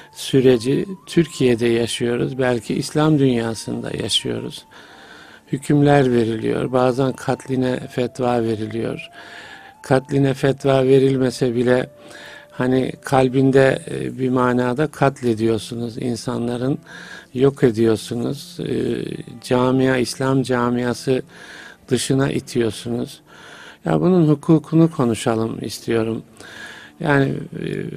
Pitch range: 120-145 Hz